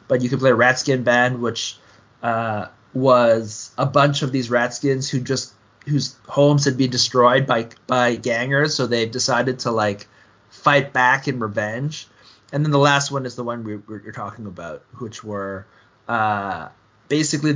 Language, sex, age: English, male, 30-49